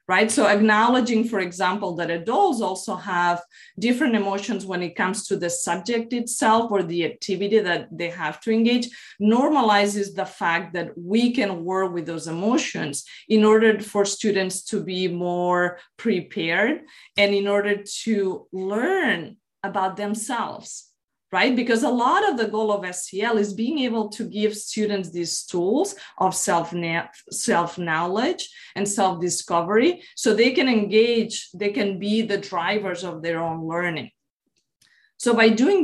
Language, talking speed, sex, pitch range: English, 150 wpm, female, 180-220 Hz